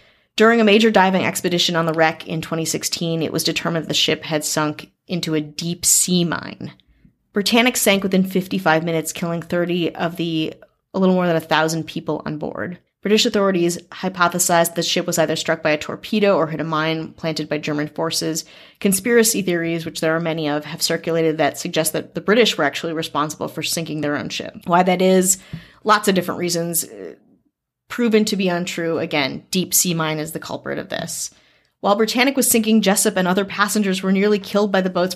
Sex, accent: female, American